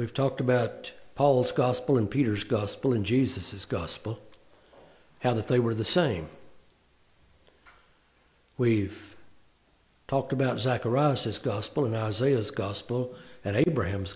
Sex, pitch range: male, 100-150 Hz